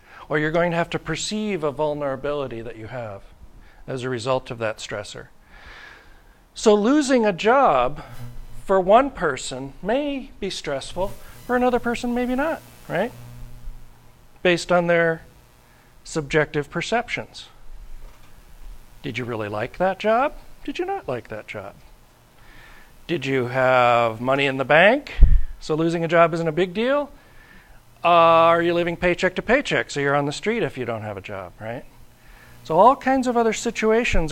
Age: 40-59